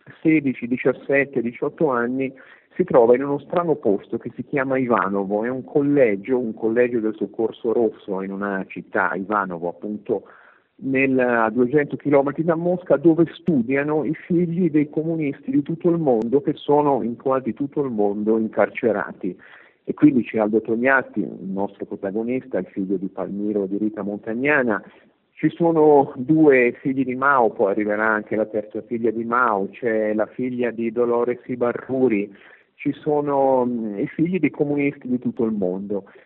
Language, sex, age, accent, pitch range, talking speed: Italian, male, 50-69, native, 110-145 Hz, 160 wpm